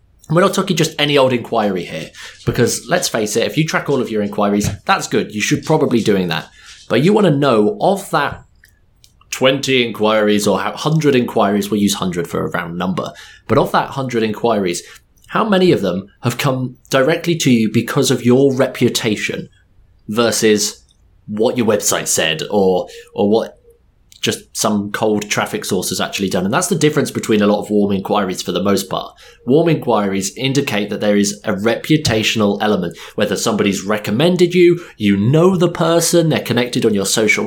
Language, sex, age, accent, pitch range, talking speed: English, male, 20-39, British, 105-150 Hz, 185 wpm